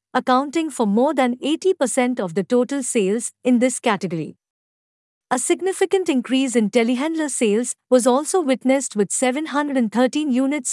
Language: English